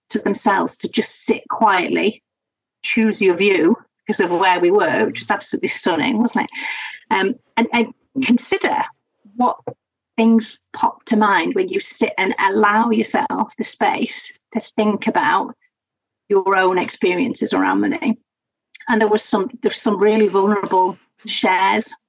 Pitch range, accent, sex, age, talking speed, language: 195-270 Hz, British, female, 30-49, 150 wpm, English